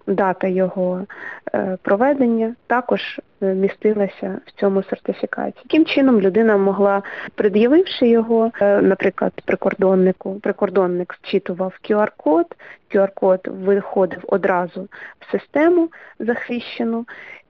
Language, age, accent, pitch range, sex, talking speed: Ukrainian, 20-39, native, 185-225 Hz, female, 85 wpm